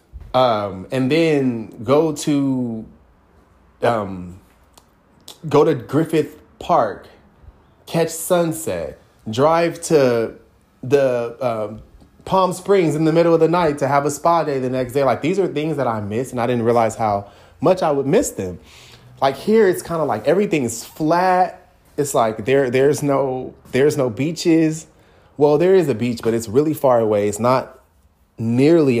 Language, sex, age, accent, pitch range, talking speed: English, male, 20-39, American, 110-150 Hz, 160 wpm